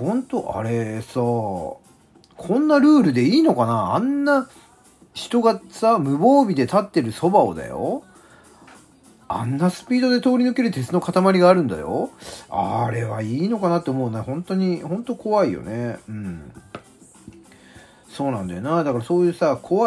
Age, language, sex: 40-59, Japanese, male